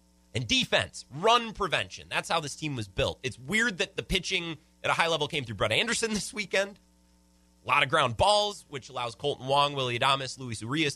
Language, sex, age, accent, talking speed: English, male, 30-49, American, 210 wpm